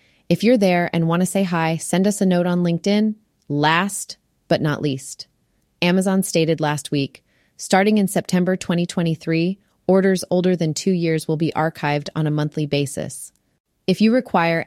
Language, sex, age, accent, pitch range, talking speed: English, female, 30-49, American, 155-185 Hz, 170 wpm